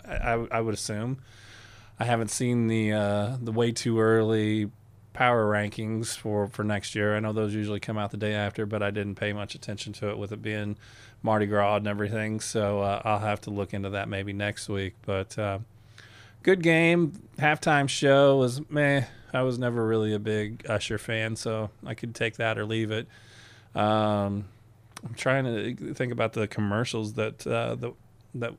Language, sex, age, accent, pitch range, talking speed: English, male, 20-39, American, 105-115 Hz, 190 wpm